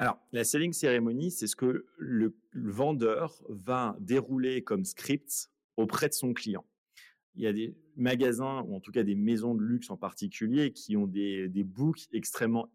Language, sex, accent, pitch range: French, male, French, 105-125 Hz